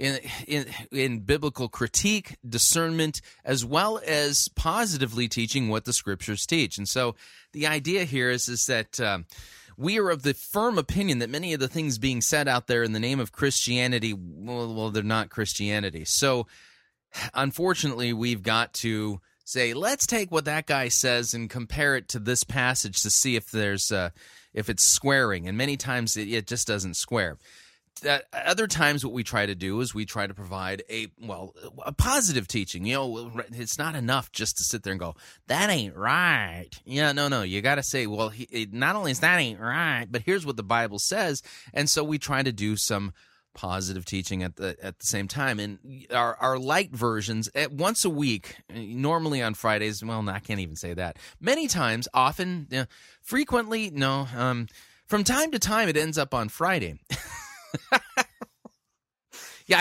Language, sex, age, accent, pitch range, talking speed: English, male, 30-49, American, 110-145 Hz, 190 wpm